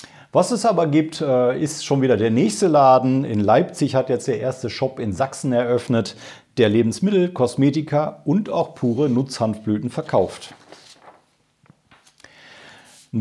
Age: 40-59